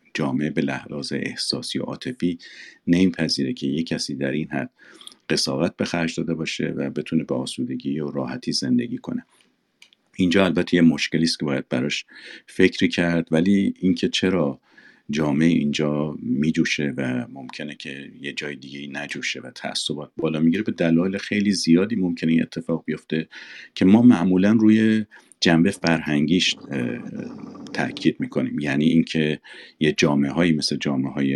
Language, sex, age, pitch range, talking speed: Persian, male, 50-69, 70-90 Hz, 145 wpm